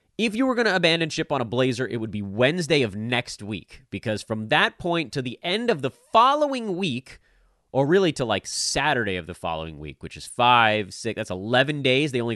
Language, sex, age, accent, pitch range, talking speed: English, male, 30-49, American, 100-150 Hz, 225 wpm